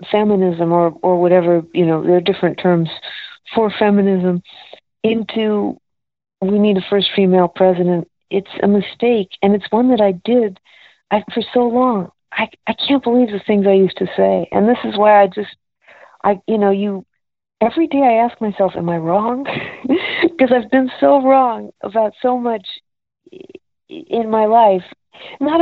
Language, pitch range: English, 195-245 Hz